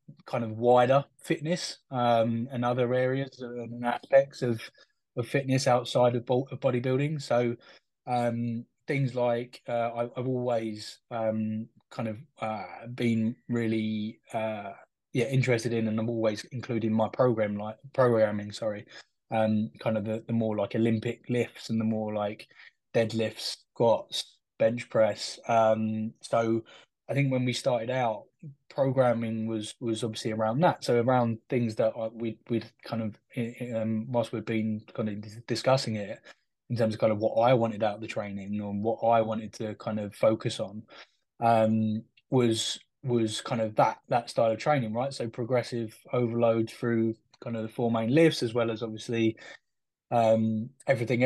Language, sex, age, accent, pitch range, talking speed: English, male, 20-39, British, 110-125 Hz, 160 wpm